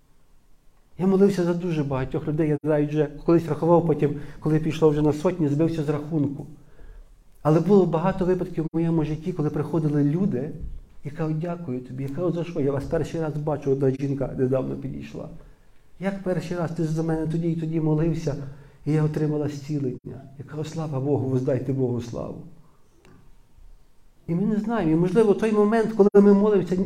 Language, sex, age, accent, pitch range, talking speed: Ukrainian, male, 50-69, native, 140-170 Hz, 180 wpm